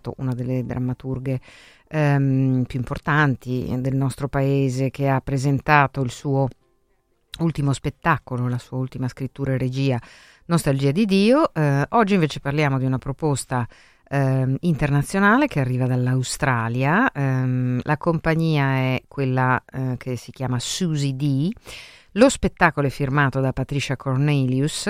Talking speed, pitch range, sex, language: 135 wpm, 125-150 Hz, female, Italian